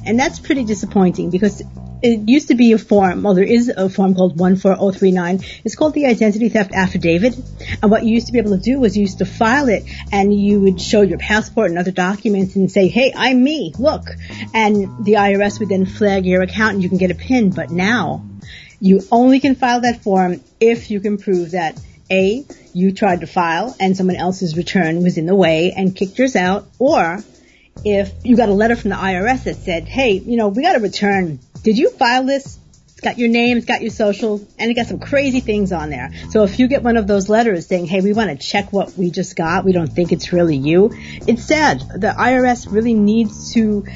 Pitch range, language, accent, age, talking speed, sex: 185-230 Hz, English, American, 40-59, 230 wpm, female